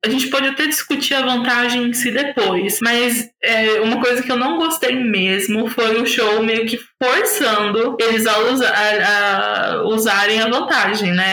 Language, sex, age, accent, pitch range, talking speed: Portuguese, female, 20-39, Brazilian, 210-255 Hz, 165 wpm